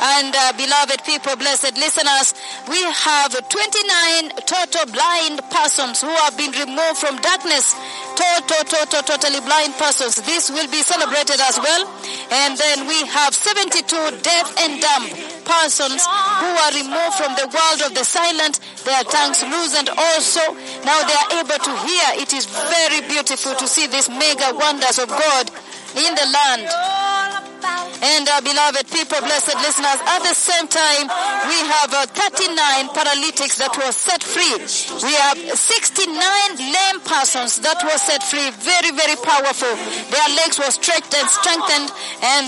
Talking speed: 155 wpm